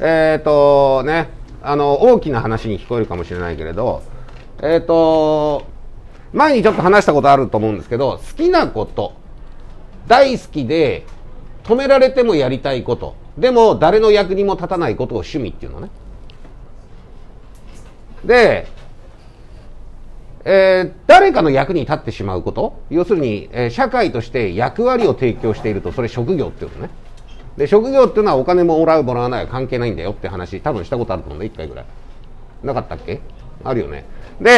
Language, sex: Japanese, male